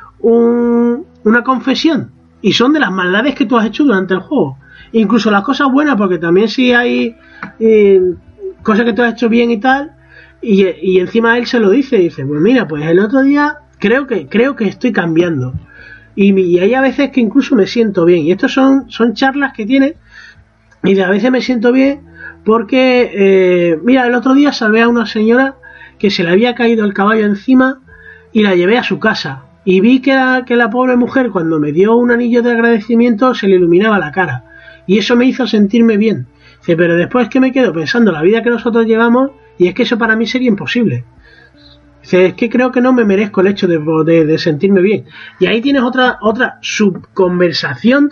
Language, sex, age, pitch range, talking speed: Spanish, male, 30-49, 185-250 Hz, 210 wpm